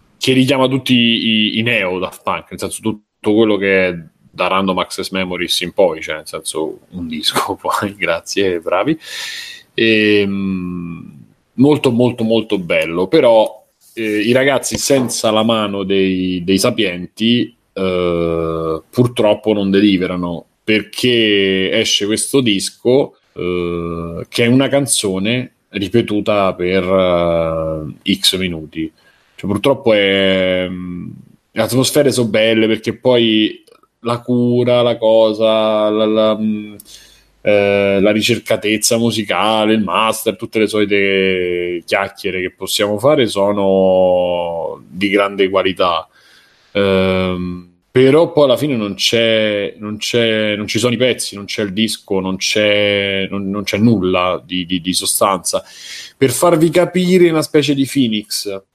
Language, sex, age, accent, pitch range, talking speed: Italian, male, 30-49, native, 95-120 Hz, 130 wpm